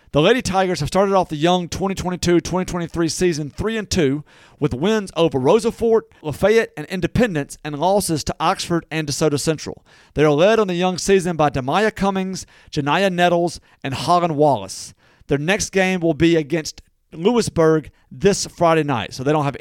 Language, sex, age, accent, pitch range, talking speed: English, male, 40-59, American, 145-180 Hz, 165 wpm